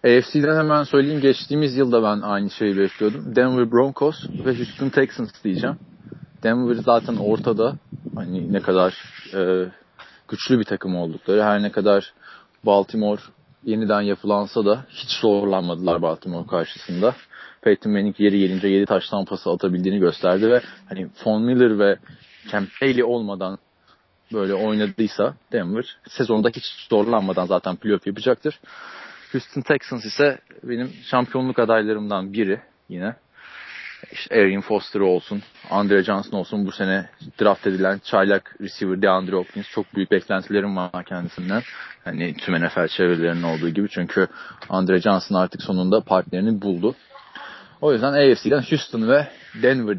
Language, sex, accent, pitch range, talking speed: Turkish, male, native, 100-125 Hz, 130 wpm